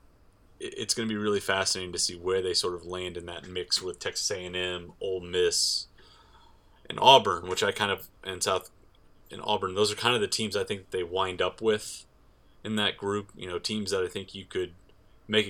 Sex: male